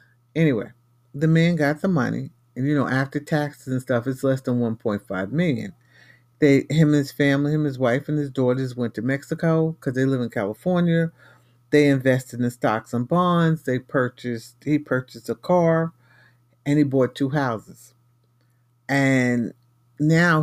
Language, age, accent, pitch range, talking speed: English, 50-69, American, 120-150 Hz, 160 wpm